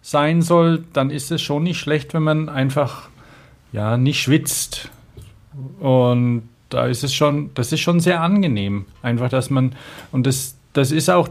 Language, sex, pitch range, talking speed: German, male, 125-155 Hz, 170 wpm